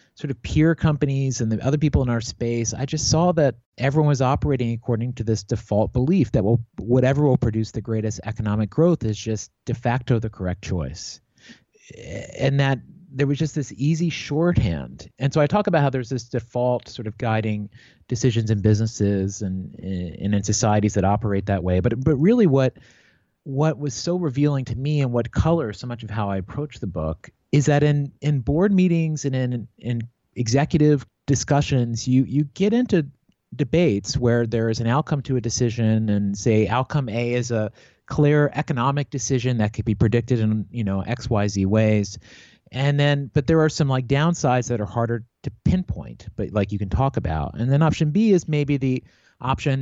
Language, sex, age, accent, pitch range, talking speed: English, male, 30-49, American, 110-145 Hz, 195 wpm